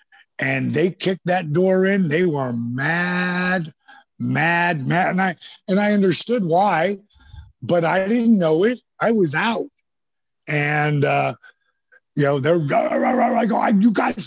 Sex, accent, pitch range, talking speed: male, American, 150-230 Hz, 140 wpm